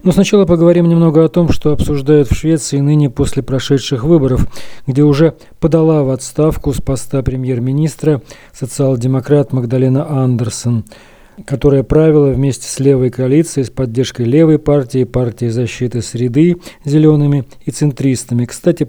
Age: 40-59